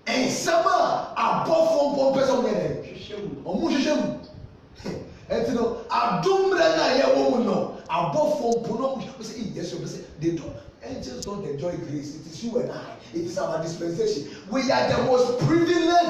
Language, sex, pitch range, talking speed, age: English, male, 190-315 Hz, 155 wpm, 30-49